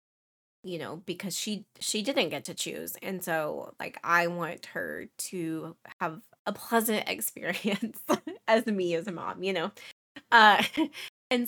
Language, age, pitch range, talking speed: English, 20-39, 170-215 Hz, 150 wpm